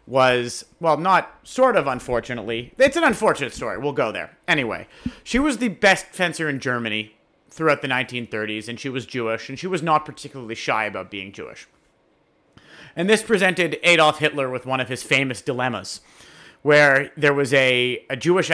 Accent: American